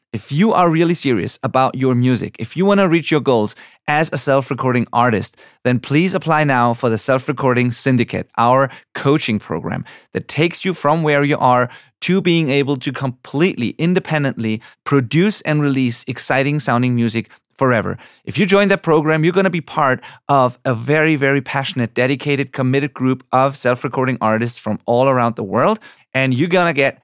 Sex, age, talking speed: male, 30-49, 180 wpm